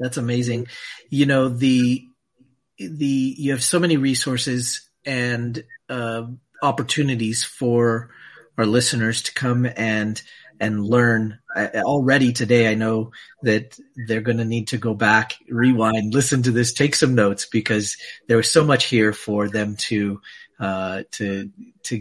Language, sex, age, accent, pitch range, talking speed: English, male, 40-59, American, 110-140 Hz, 145 wpm